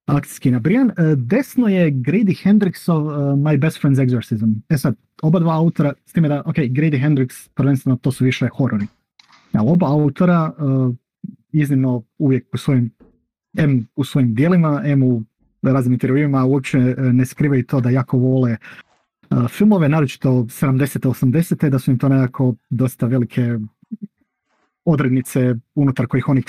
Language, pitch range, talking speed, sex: Croatian, 130-155 Hz, 145 wpm, male